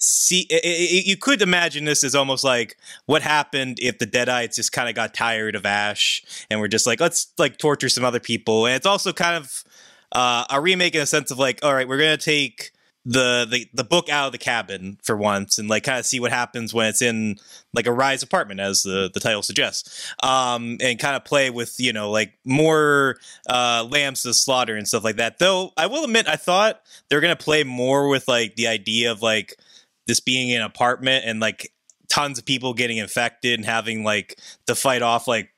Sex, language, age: male, English, 20-39